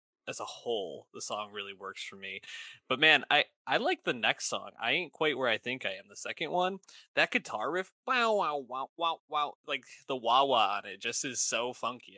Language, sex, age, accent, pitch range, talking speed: English, male, 20-39, American, 110-150 Hz, 220 wpm